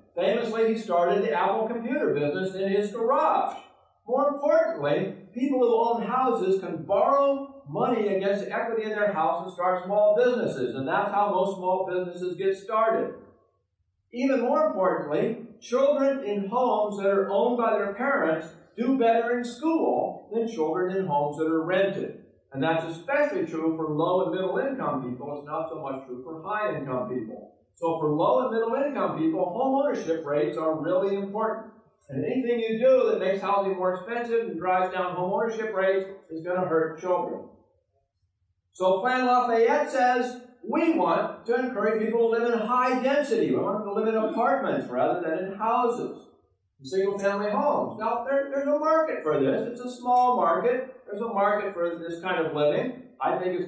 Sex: male